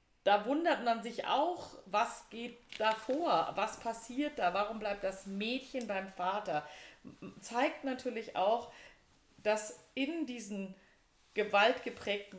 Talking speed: 115 wpm